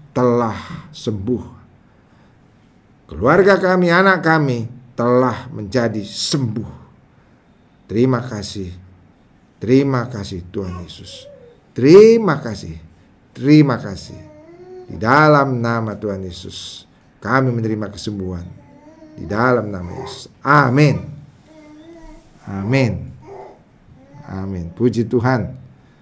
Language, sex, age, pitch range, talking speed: English, male, 50-69, 100-140 Hz, 85 wpm